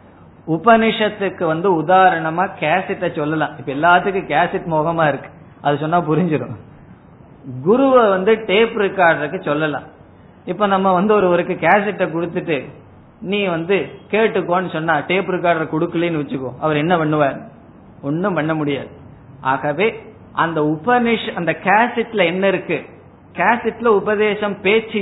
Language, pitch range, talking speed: Tamil, 150-195 Hz, 115 wpm